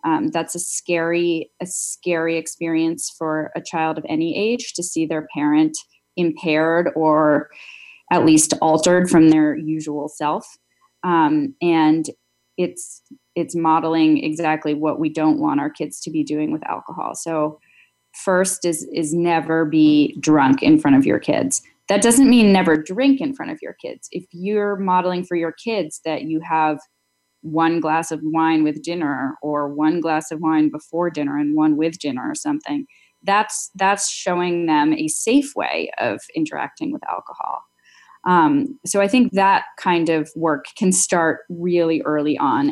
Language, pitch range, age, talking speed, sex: English, 155-235 Hz, 20-39, 165 wpm, female